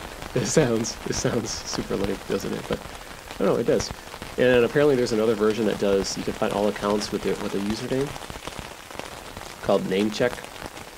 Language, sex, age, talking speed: English, male, 30-49, 190 wpm